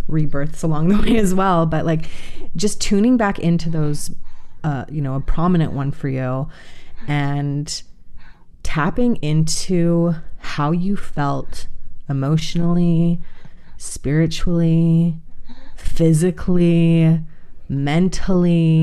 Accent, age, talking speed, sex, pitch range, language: American, 30-49, 100 wpm, female, 130-165 Hz, English